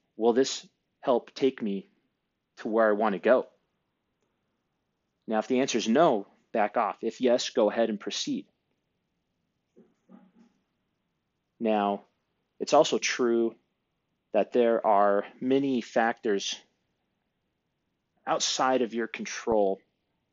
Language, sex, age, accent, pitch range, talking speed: English, male, 30-49, American, 105-125 Hz, 110 wpm